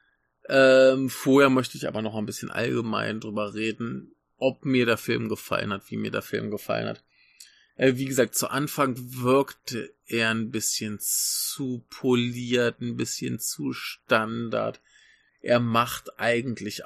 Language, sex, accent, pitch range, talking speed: German, male, German, 105-130 Hz, 145 wpm